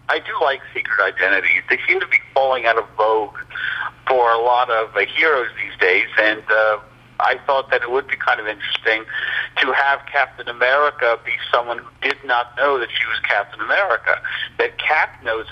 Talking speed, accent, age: 195 wpm, American, 50-69